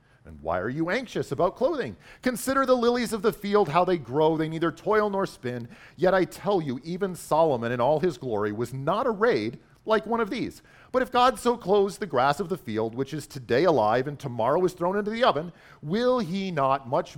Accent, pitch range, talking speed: American, 135-195 Hz, 220 wpm